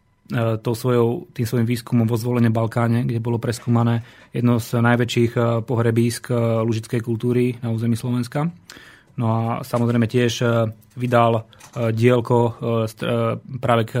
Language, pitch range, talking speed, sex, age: Slovak, 115-125 Hz, 115 wpm, male, 30-49